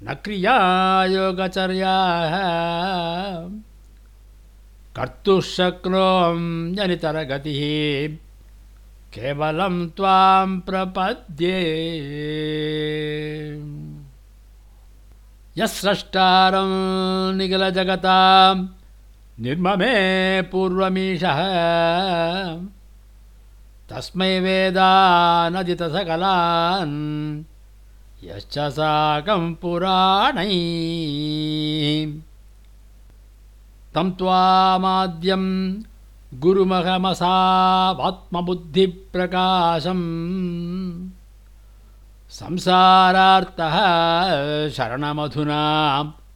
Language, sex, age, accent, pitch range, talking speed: English, male, 60-79, Indian, 145-190 Hz, 40 wpm